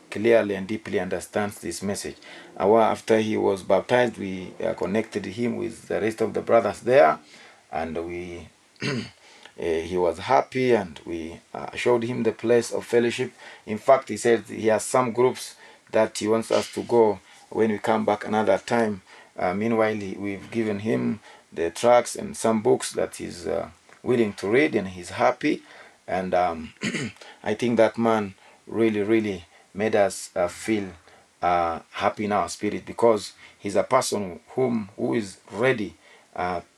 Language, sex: English, male